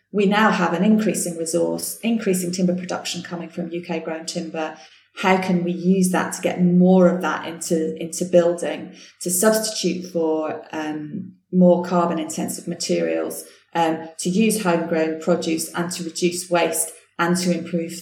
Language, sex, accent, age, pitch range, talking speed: English, female, British, 30-49, 165-185 Hz, 150 wpm